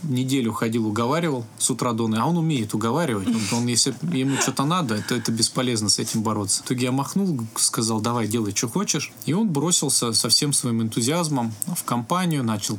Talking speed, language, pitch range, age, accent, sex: 190 wpm, Russian, 115-140 Hz, 20-39, native, male